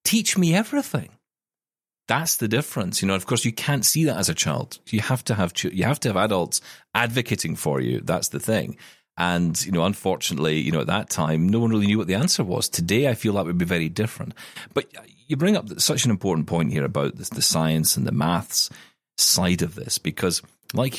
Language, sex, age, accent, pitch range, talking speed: English, male, 40-59, British, 85-115 Hz, 225 wpm